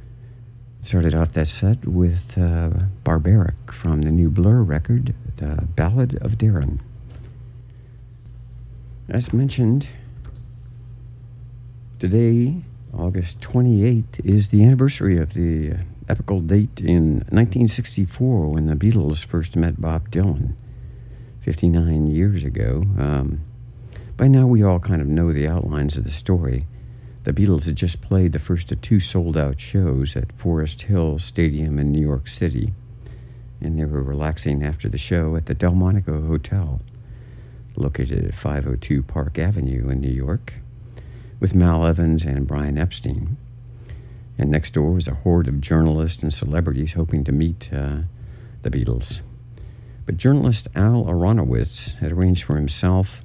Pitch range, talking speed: 80-120 Hz, 135 wpm